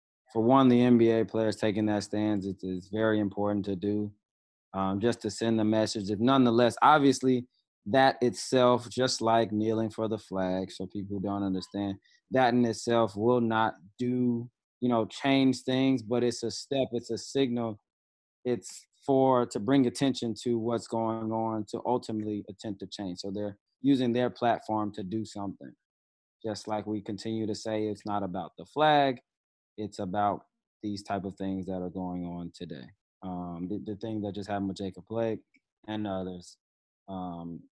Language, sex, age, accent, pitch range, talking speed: English, male, 20-39, American, 100-115 Hz, 175 wpm